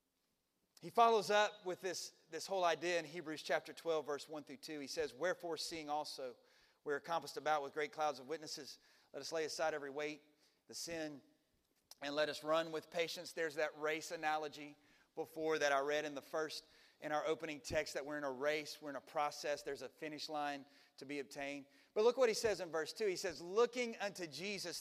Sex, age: male, 30-49